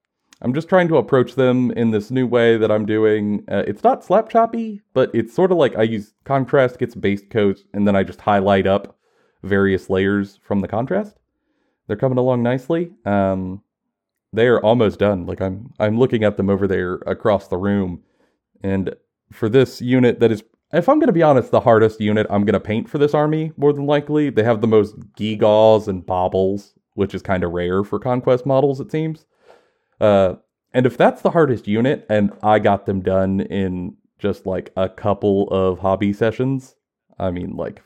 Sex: male